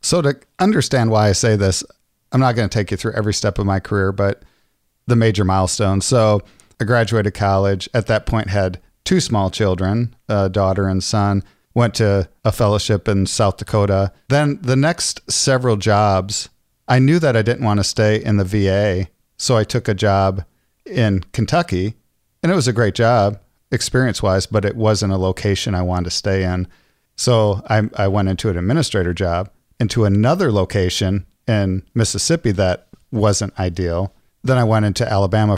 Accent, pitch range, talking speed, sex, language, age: American, 95-115 Hz, 180 wpm, male, English, 50-69